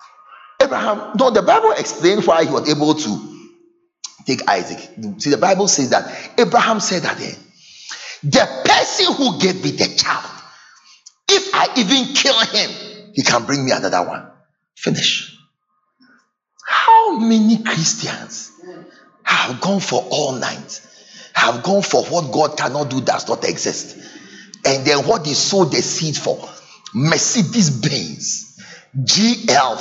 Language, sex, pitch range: English, male, 155-245 Hz